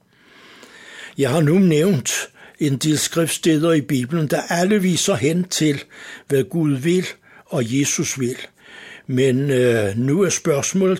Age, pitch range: 60-79, 135-165 Hz